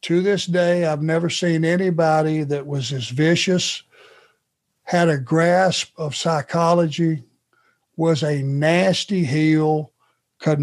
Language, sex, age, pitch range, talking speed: English, male, 60-79, 155-185 Hz, 120 wpm